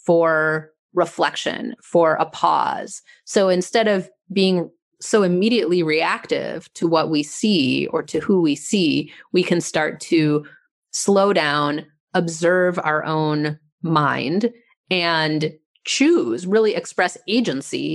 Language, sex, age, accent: English, female, 30-49, American